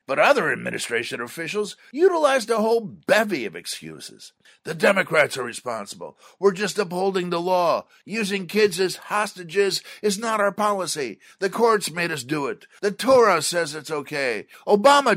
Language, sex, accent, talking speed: English, male, American, 155 wpm